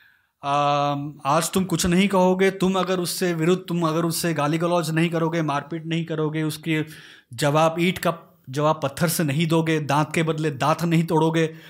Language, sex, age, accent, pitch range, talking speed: Hindi, male, 30-49, native, 160-220 Hz, 175 wpm